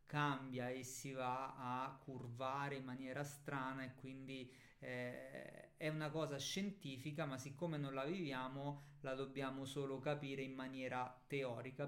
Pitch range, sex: 130-150 Hz, male